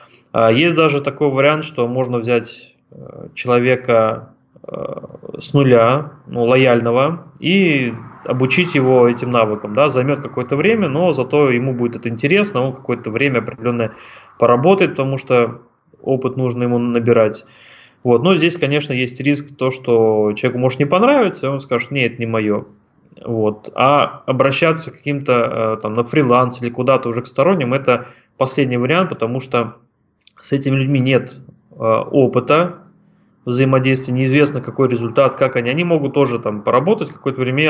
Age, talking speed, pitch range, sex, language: 20-39, 150 wpm, 120-140 Hz, male, Ukrainian